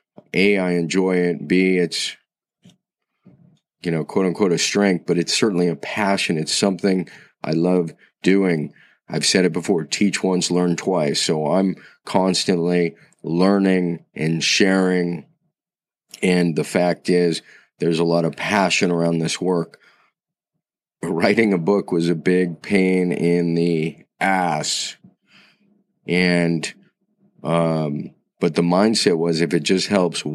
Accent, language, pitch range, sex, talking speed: American, English, 85-95 Hz, male, 130 wpm